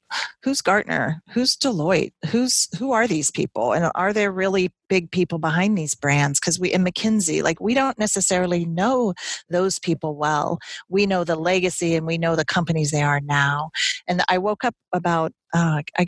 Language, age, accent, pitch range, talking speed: English, 40-59, American, 160-190 Hz, 185 wpm